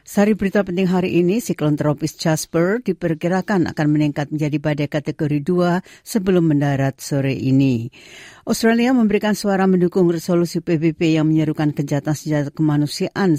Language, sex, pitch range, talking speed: Indonesian, female, 135-175 Hz, 130 wpm